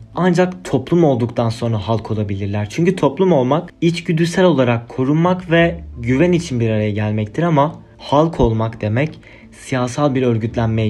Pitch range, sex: 110-145 Hz, male